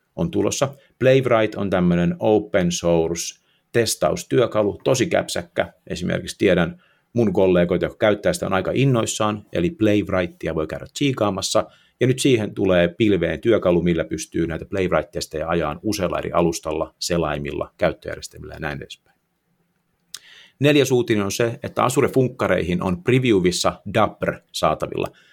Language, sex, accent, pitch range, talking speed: Finnish, male, native, 85-120 Hz, 130 wpm